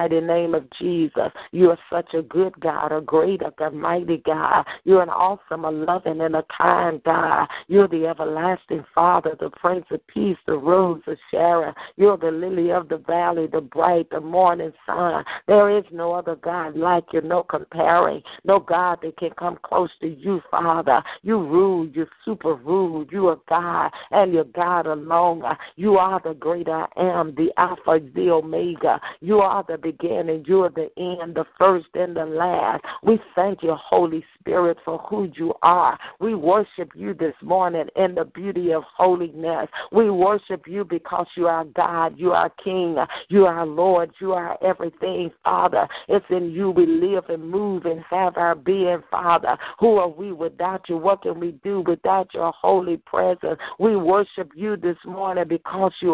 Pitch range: 165-190 Hz